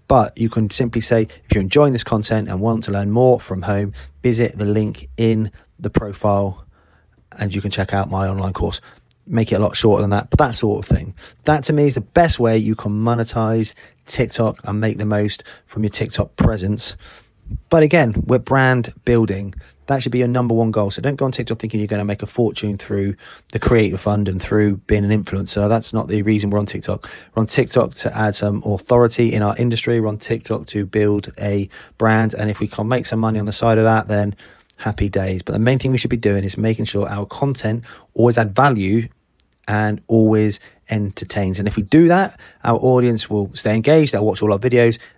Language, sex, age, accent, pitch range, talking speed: English, male, 30-49, British, 105-120 Hz, 225 wpm